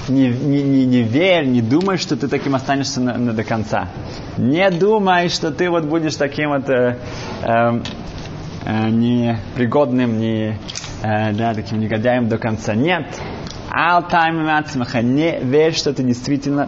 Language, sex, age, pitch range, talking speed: Russian, male, 20-39, 110-135 Hz, 150 wpm